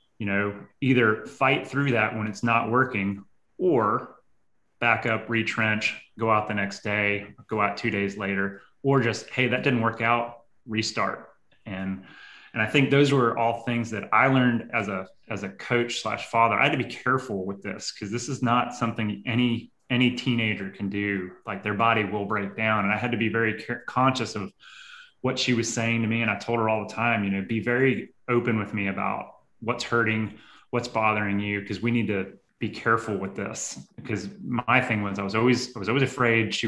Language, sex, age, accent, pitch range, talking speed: English, male, 20-39, American, 105-125 Hz, 210 wpm